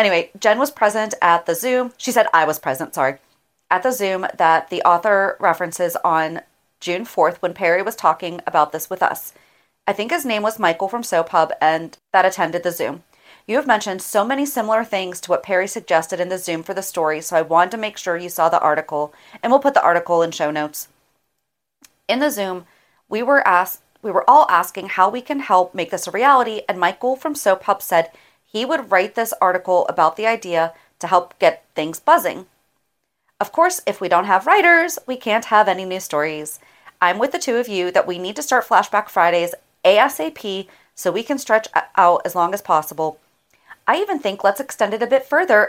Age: 30-49